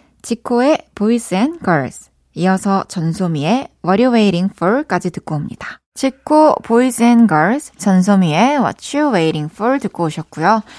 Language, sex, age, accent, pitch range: Korean, female, 20-39, native, 190-255 Hz